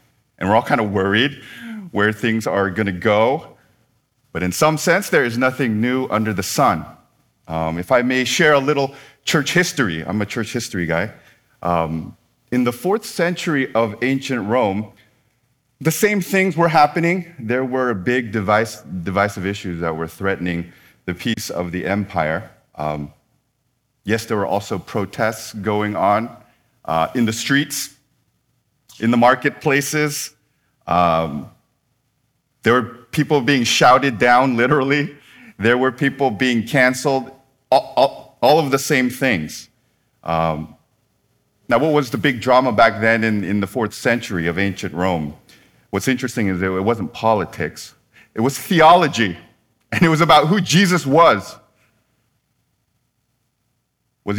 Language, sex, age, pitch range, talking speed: English, male, 30-49, 105-140 Hz, 145 wpm